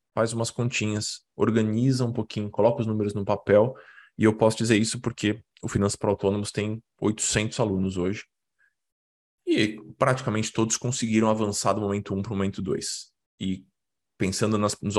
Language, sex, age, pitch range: Portuguese, male, 20-39, 95-115 Hz